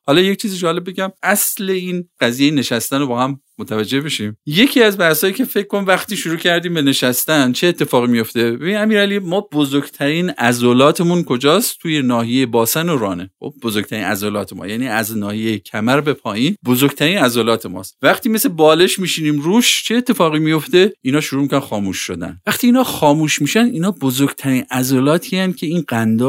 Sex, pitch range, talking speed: male, 125-180 Hz, 175 wpm